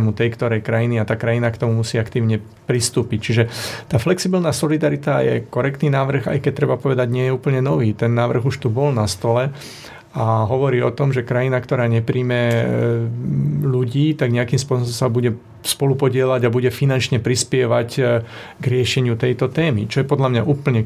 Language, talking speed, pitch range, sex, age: Slovak, 175 wpm, 115-130 Hz, male, 40-59